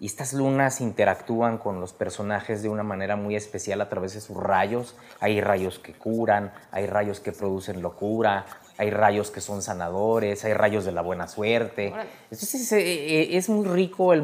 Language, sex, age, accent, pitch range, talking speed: English, male, 30-49, Mexican, 105-135 Hz, 180 wpm